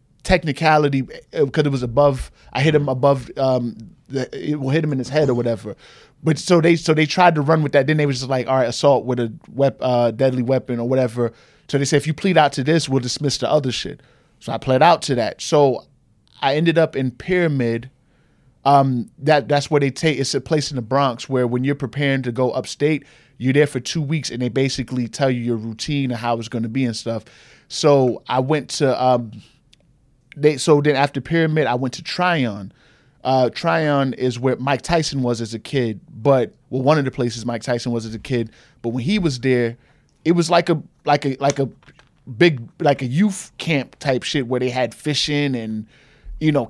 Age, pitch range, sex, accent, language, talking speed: 20-39, 125-150 Hz, male, American, English, 225 wpm